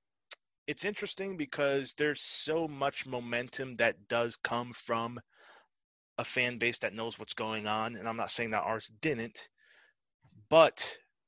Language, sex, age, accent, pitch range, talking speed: English, male, 30-49, American, 110-135 Hz, 145 wpm